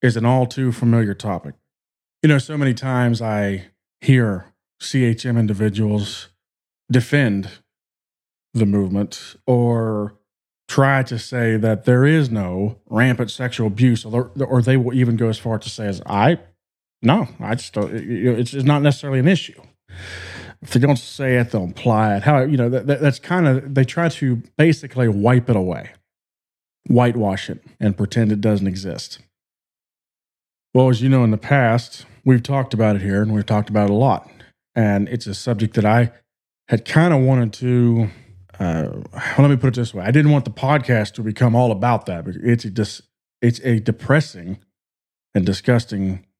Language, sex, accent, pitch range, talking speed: English, male, American, 105-130 Hz, 175 wpm